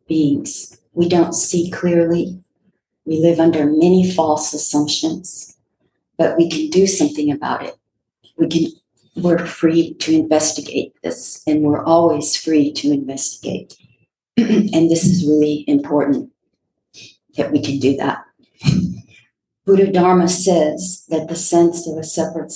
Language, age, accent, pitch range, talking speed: English, 50-69, American, 155-175 Hz, 135 wpm